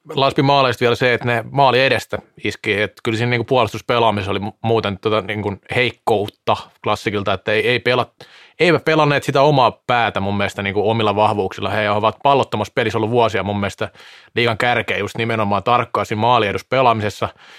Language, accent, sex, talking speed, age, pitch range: Finnish, native, male, 160 wpm, 30-49, 110-140 Hz